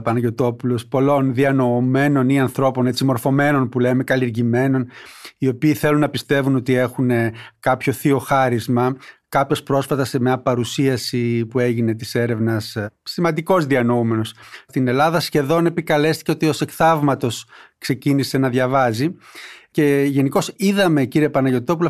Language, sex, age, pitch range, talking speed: Greek, male, 30-49, 125-160 Hz, 125 wpm